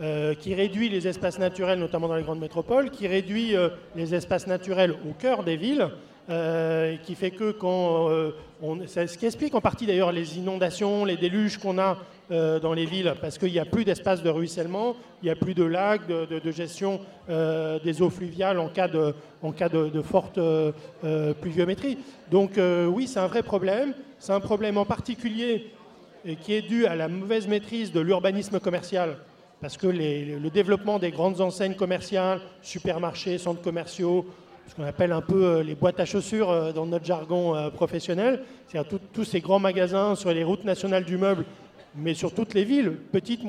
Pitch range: 165-205 Hz